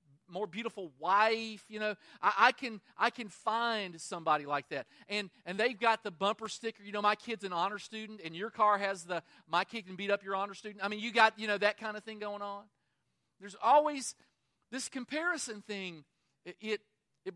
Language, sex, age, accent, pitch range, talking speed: English, male, 40-59, American, 175-230 Hz, 210 wpm